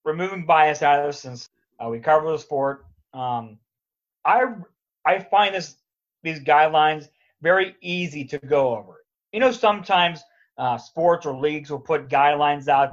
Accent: American